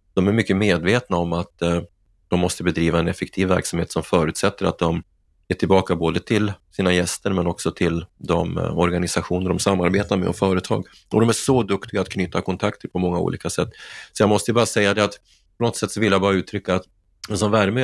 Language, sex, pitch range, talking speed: Swedish, male, 90-105 Hz, 210 wpm